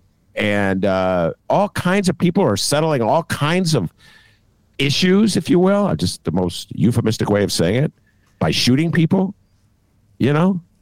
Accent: American